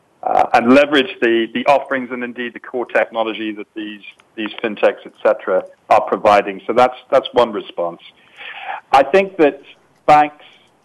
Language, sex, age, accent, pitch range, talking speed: English, male, 50-69, British, 115-140 Hz, 150 wpm